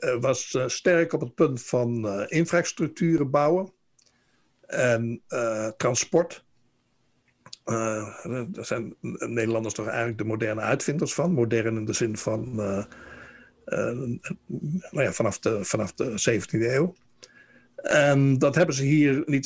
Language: Dutch